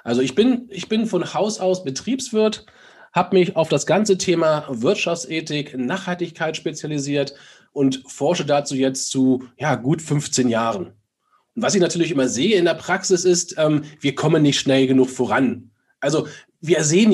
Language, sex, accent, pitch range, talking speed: German, male, German, 135-175 Hz, 165 wpm